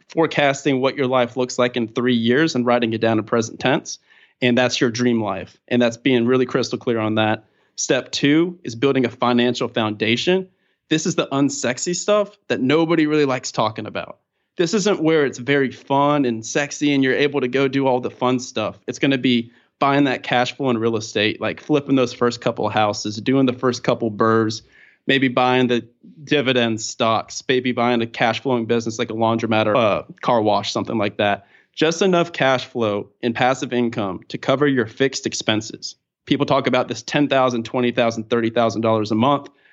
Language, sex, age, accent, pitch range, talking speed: English, male, 30-49, American, 120-140 Hz, 200 wpm